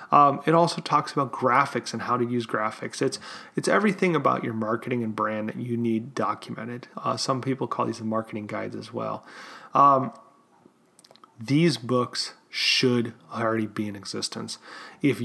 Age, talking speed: 30-49, 160 wpm